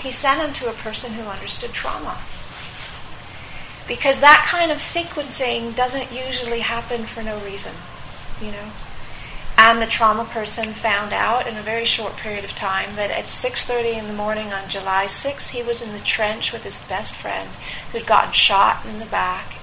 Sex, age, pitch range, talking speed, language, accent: female, 40-59, 215-260 Hz, 180 wpm, English, American